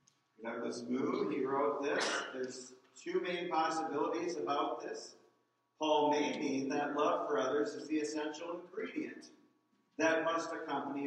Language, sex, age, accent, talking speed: English, male, 50-69, American, 135 wpm